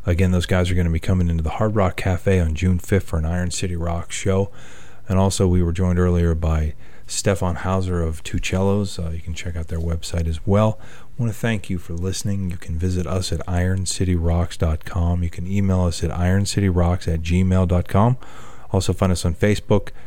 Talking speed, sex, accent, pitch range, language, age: 205 wpm, male, American, 85-95 Hz, English, 30-49